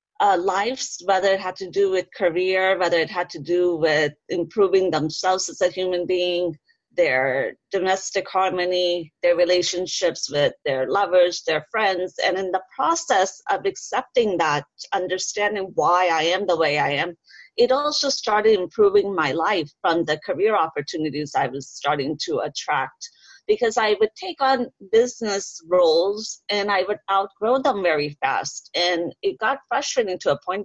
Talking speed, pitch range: 160 wpm, 175-225 Hz